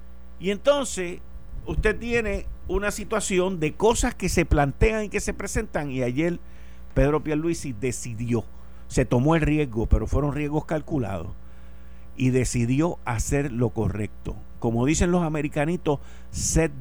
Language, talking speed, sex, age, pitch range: Spanish, 135 wpm, male, 50-69, 100-160 Hz